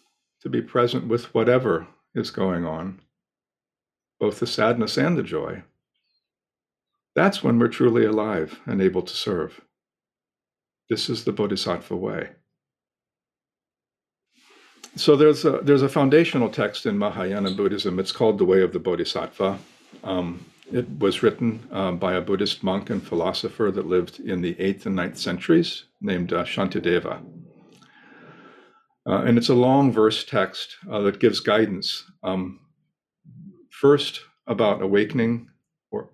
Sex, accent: male, American